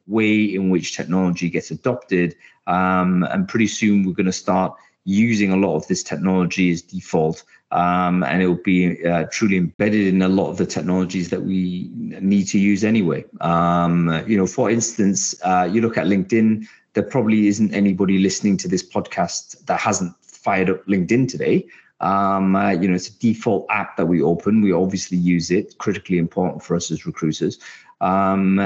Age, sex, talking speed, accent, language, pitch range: 30-49, male, 185 wpm, British, English, 90-105 Hz